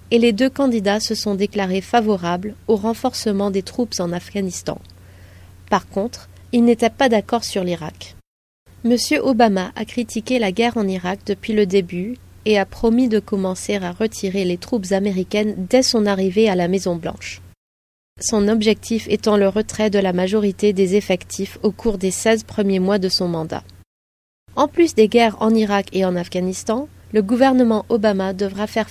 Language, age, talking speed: French, 30-49, 170 wpm